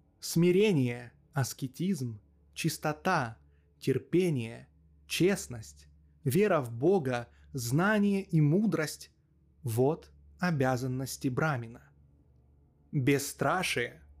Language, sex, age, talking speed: Russian, male, 20-39, 65 wpm